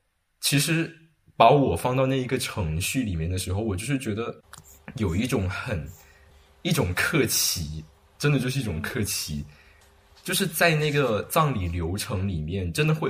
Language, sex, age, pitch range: Chinese, male, 20-39, 85-125 Hz